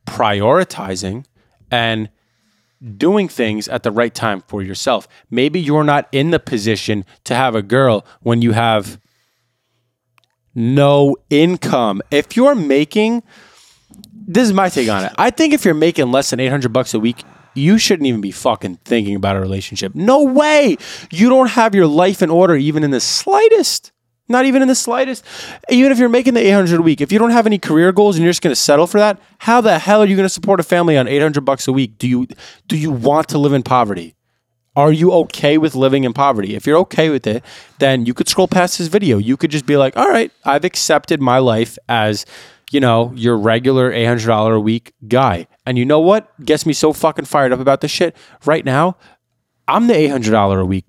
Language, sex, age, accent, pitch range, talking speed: English, male, 20-39, American, 120-180 Hz, 210 wpm